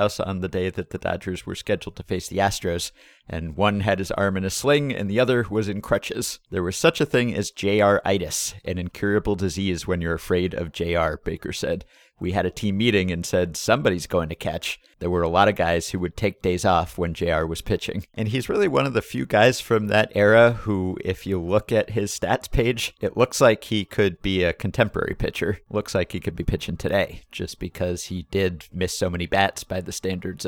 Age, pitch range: 50-69, 85-100 Hz